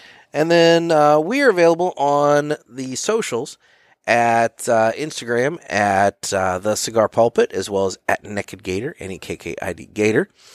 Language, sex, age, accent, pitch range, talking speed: English, male, 30-49, American, 110-150 Hz, 140 wpm